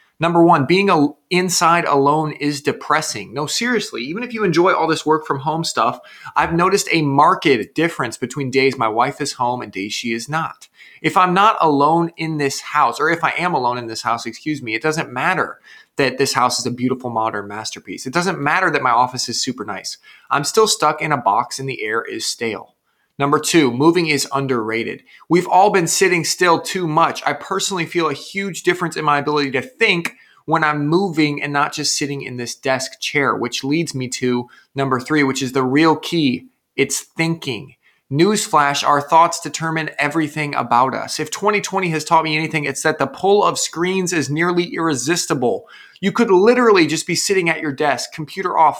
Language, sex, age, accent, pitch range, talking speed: English, male, 30-49, American, 140-175 Hz, 200 wpm